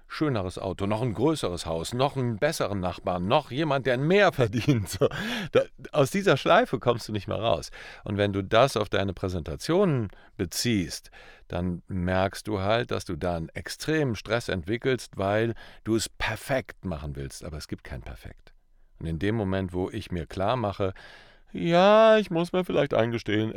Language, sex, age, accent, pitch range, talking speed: German, male, 50-69, German, 90-115 Hz, 180 wpm